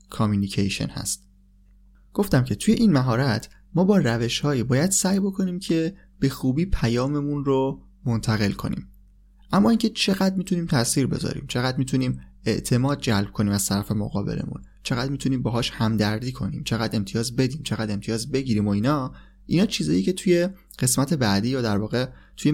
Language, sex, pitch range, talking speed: Persian, male, 105-140 Hz, 150 wpm